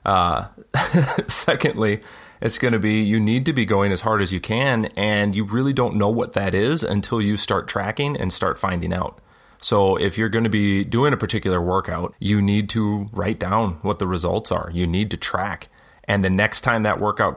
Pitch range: 95-110 Hz